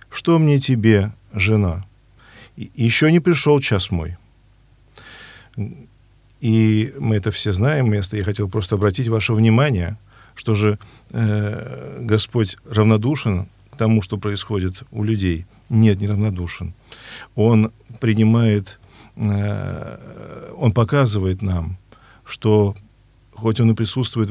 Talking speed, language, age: 110 wpm, Russian, 40-59